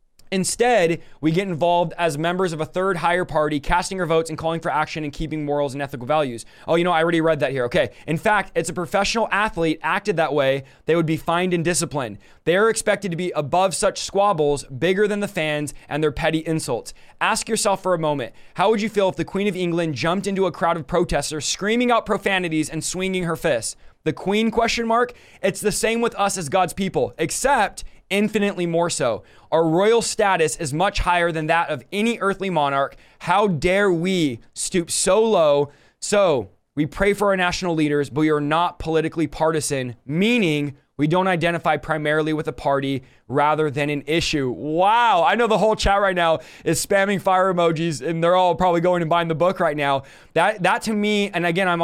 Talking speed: 210 wpm